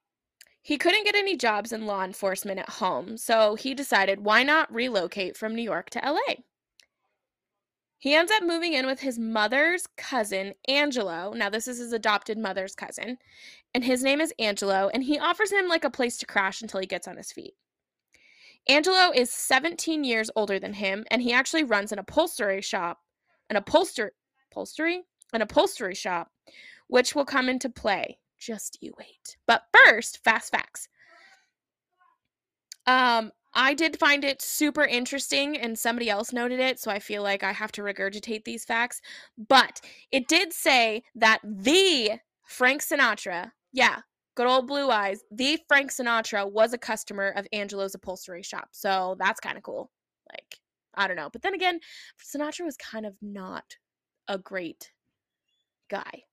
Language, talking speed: English, 165 wpm